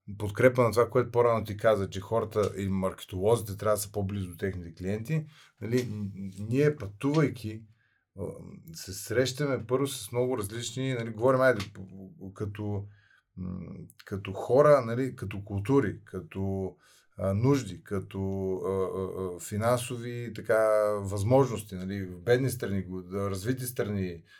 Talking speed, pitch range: 120 wpm, 100-135 Hz